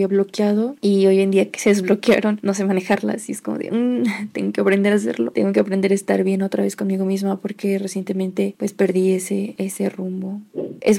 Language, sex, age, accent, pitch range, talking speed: Spanish, female, 20-39, Mexican, 195-225 Hz, 215 wpm